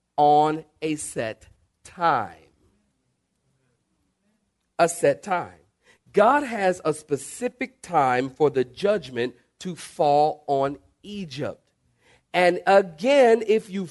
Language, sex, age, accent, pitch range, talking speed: English, male, 40-59, American, 150-220 Hz, 100 wpm